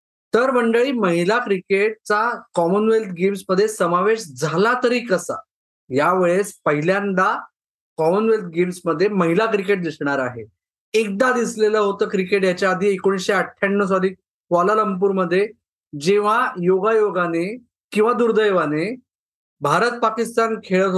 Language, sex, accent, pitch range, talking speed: Marathi, male, native, 175-220 Hz, 100 wpm